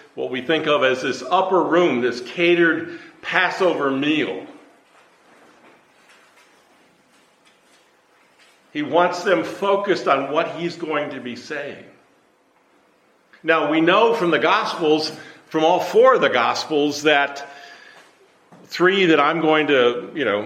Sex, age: male, 50-69